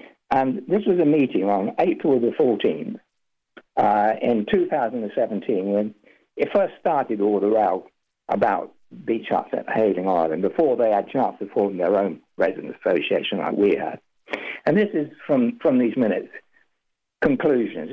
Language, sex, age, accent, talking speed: English, male, 60-79, British, 160 wpm